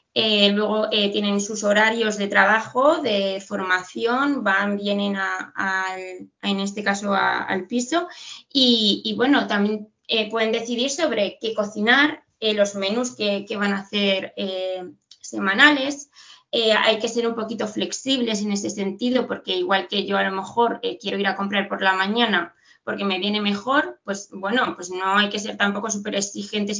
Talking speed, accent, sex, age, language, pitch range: 170 wpm, Spanish, female, 20-39, Spanish, 195-230 Hz